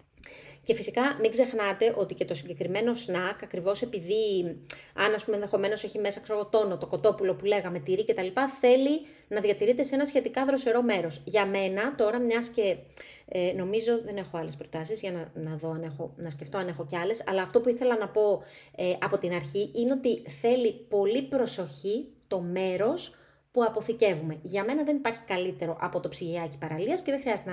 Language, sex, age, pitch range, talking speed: Greek, female, 30-49, 180-235 Hz, 185 wpm